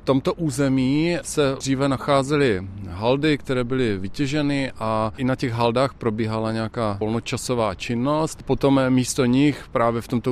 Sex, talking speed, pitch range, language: male, 145 wpm, 115-130 Hz, Czech